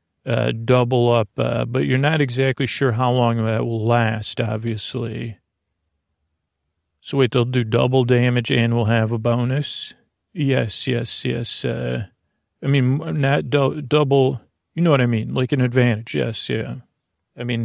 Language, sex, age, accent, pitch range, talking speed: English, male, 40-59, American, 110-125 Hz, 160 wpm